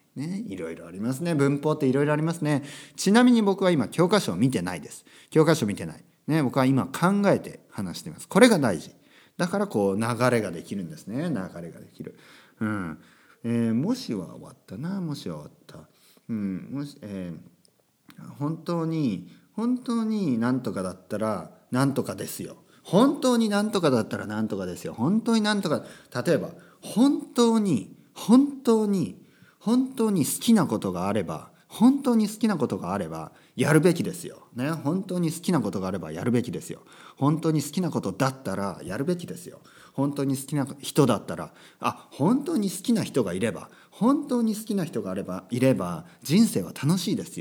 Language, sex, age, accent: Japanese, male, 40-59, native